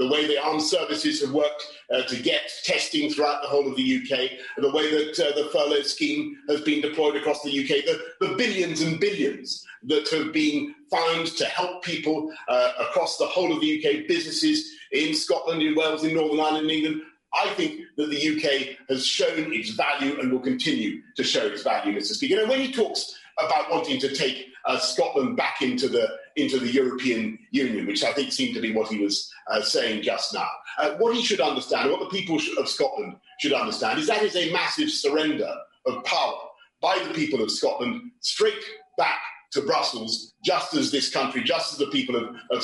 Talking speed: 205 wpm